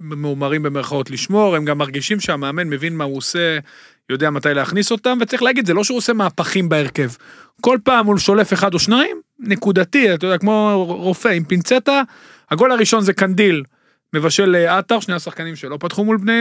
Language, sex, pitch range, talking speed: Hebrew, male, 155-205 Hz, 180 wpm